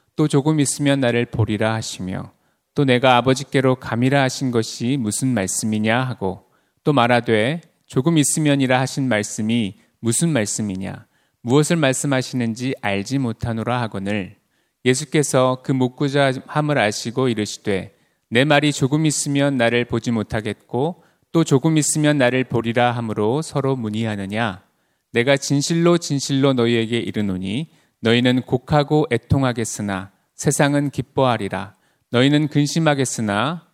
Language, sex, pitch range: Korean, male, 110-145 Hz